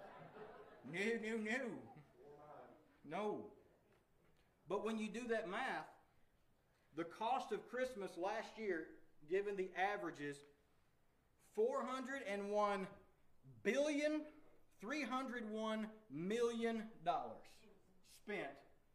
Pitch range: 155-220 Hz